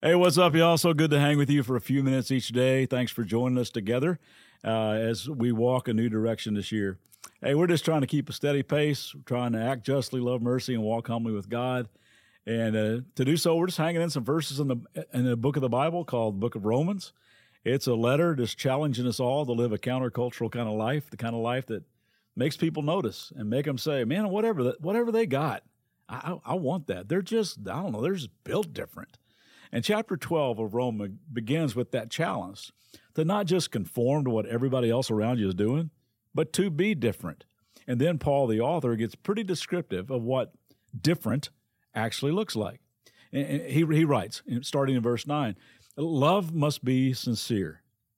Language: English